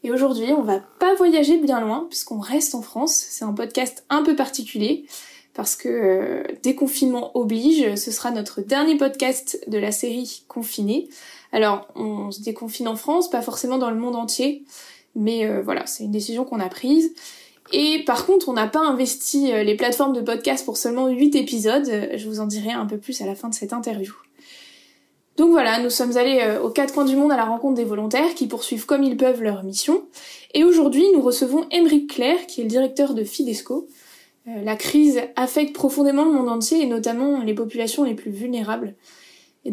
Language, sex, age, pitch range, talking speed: French, female, 20-39, 230-290 Hz, 195 wpm